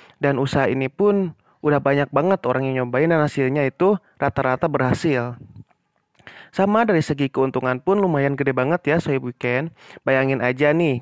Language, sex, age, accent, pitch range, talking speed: Indonesian, male, 30-49, native, 125-160 Hz, 165 wpm